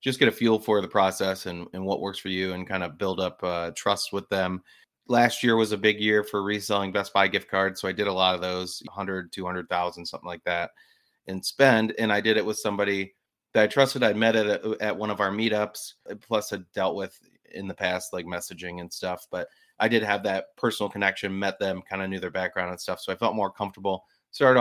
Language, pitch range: English, 95-105 Hz